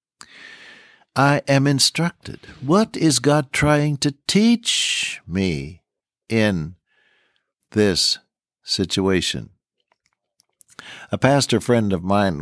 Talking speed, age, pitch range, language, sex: 85 wpm, 60-79, 90-125 Hz, English, male